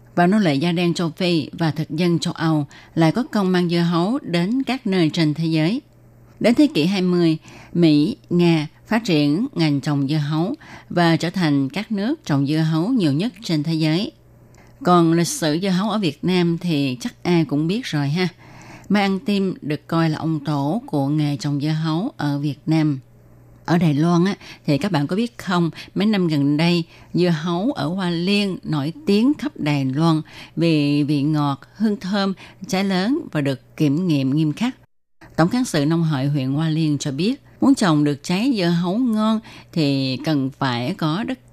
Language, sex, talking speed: Vietnamese, female, 200 wpm